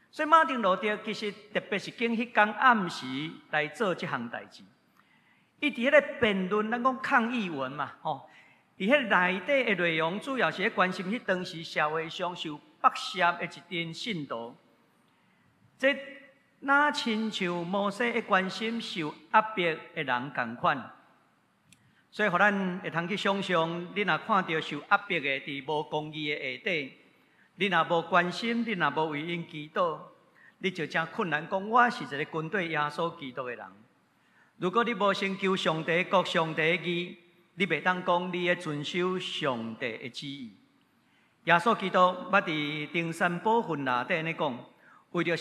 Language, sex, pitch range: Chinese, male, 155-210 Hz